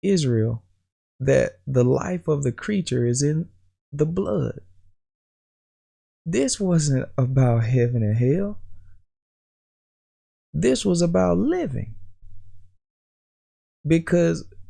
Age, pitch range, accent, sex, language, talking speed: 20-39, 95-150 Hz, American, male, English, 90 wpm